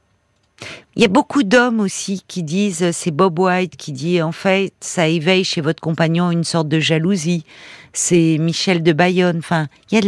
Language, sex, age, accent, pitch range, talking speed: French, female, 50-69, French, 155-195 Hz, 195 wpm